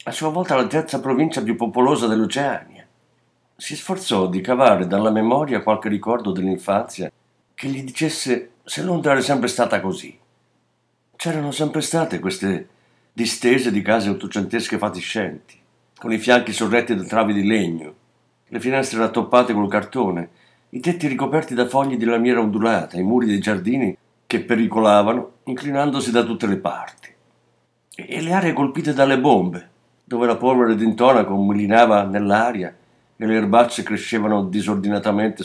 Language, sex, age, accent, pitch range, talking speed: Italian, male, 50-69, native, 105-130 Hz, 145 wpm